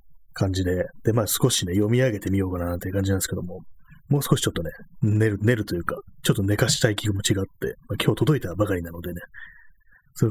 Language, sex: Japanese, male